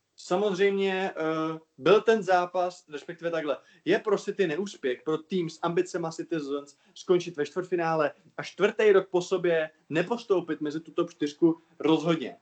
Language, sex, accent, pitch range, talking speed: Czech, male, native, 155-175 Hz, 145 wpm